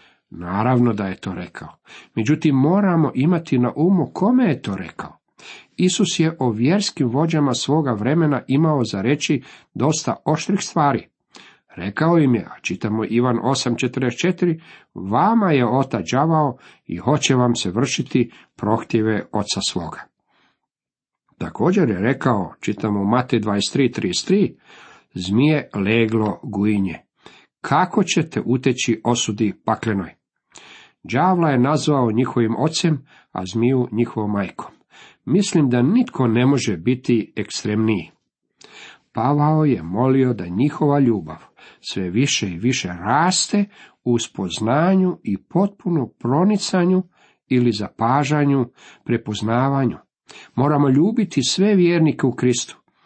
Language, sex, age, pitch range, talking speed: Croatian, male, 50-69, 115-155 Hz, 110 wpm